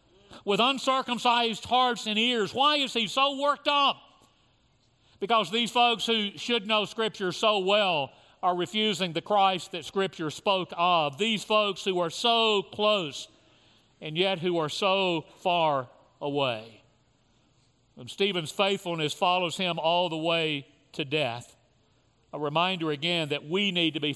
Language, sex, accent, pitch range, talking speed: English, male, American, 150-205 Hz, 145 wpm